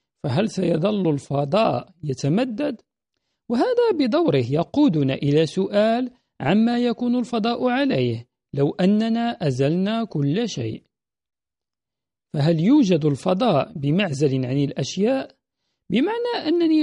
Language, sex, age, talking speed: Arabic, male, 50-69, 95 wpm